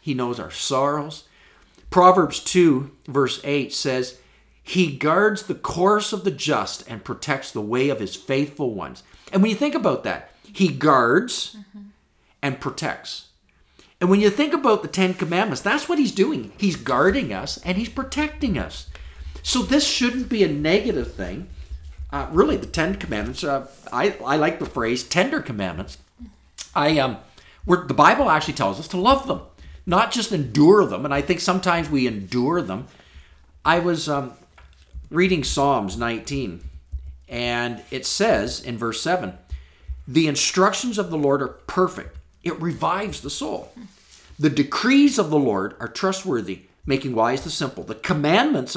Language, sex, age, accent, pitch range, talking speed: English, male, 50-69, American, 120-190 Hz, 160 wpm